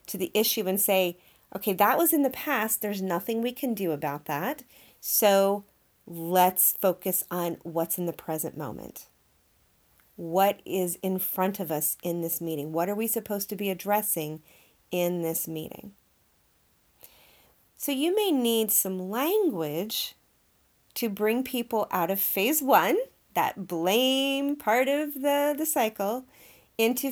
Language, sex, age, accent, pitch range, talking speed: English, female, 30-49, American, 170-230 Hz, 150 wpm